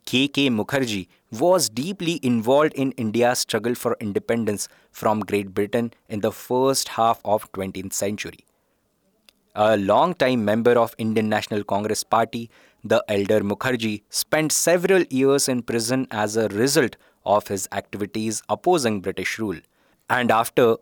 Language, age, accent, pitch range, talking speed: English, 20-39, Indian, 105-130 Hz, 140 wpm